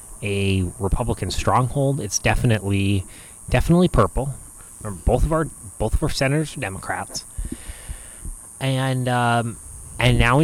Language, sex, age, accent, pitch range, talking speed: English, male, 30-49, American, 100-125 Hz, 120 wpm